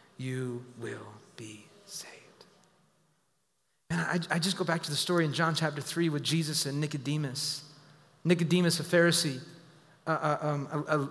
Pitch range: 150-210 Hz